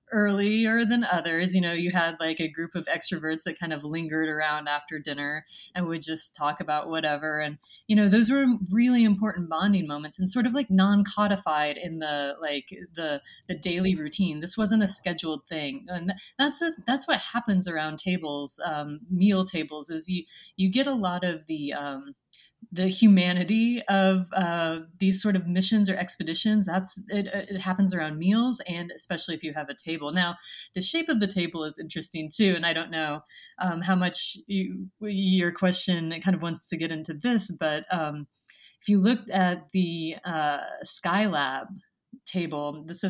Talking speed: 180 wpm